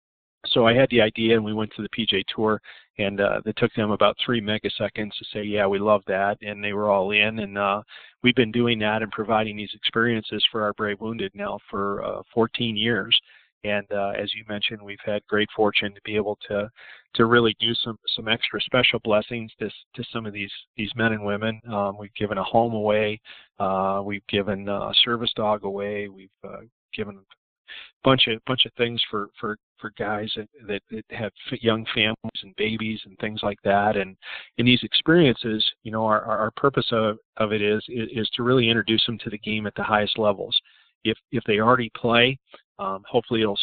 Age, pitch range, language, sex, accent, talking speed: 40-59, 105-115 Hz, English, male, American, 205 wpm